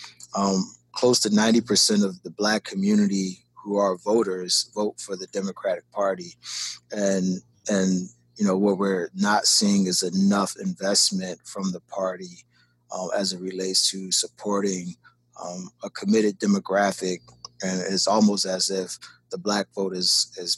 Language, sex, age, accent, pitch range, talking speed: English, male, 20-39, American, 95-115 Hz, 150 wpm